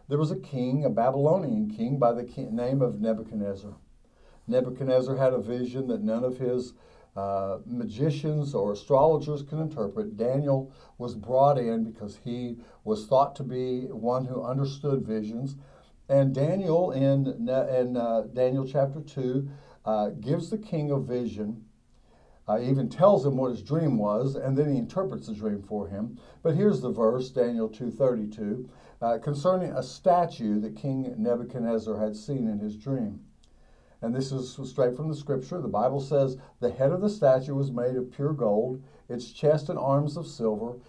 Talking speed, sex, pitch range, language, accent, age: 165 wpm, male, 115-140 Hz, English, American, 60-79